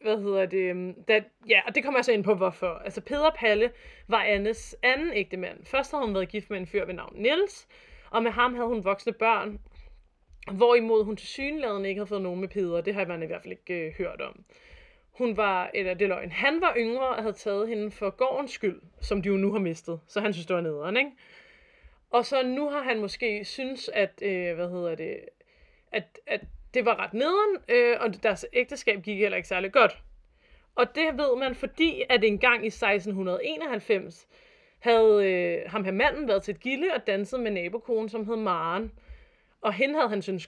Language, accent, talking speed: Danish, native, 215 wpm